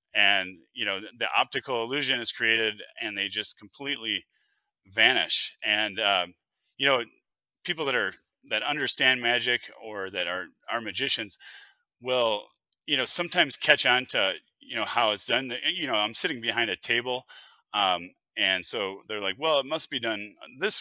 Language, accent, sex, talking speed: English, American, male, 165 wpm